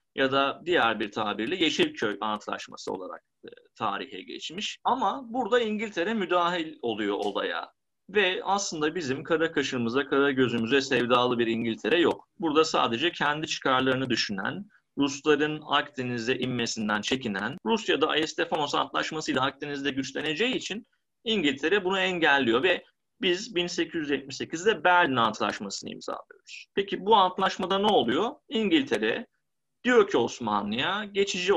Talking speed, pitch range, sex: 120 wpm, 135-225 Hz, male